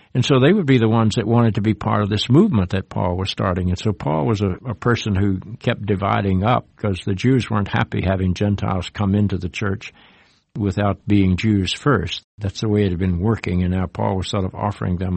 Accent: American